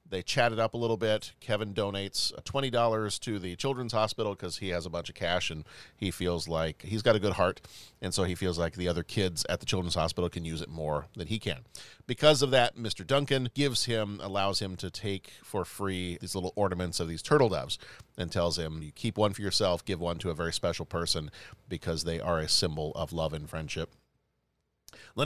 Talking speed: 220 wpm